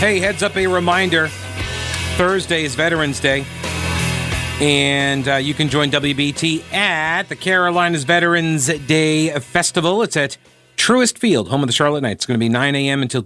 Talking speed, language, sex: 165 wpm, English, male